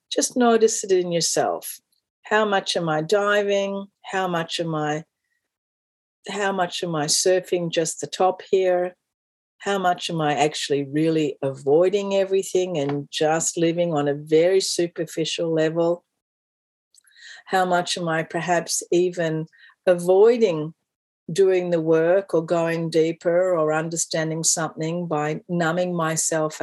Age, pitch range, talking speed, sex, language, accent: 50-69, 155-195 Hz, 130 wpm, female, English, Australian